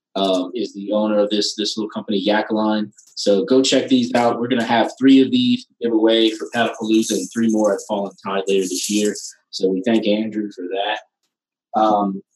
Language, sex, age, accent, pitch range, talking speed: English, male, 30-49, American, 105-125 Hz, 205 wpm